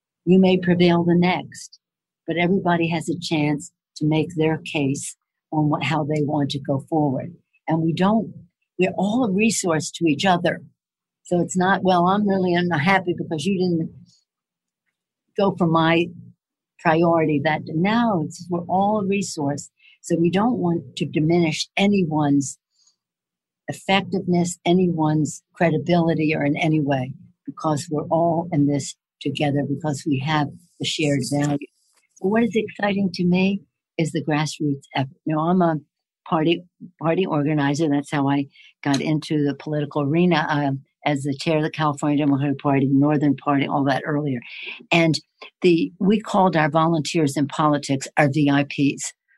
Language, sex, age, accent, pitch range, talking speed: English, female, 60-79, American, 145-175 Hz, 155 wpm